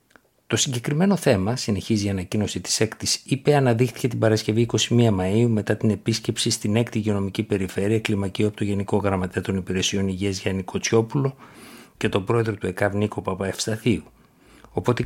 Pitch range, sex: 95-115 Hz, male